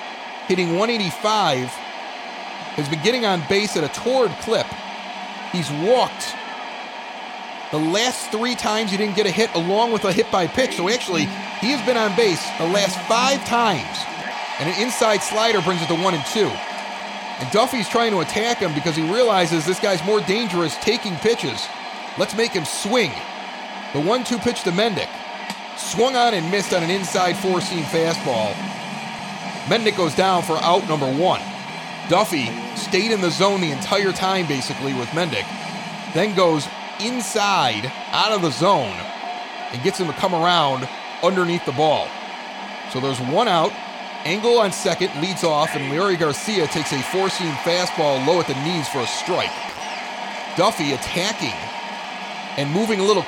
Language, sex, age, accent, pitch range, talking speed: English, male, 40-59, American, 170-215 Hz, 165 wpm